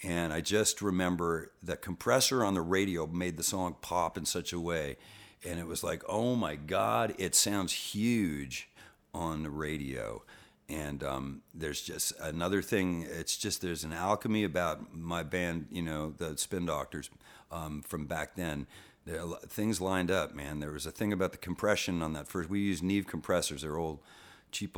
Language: English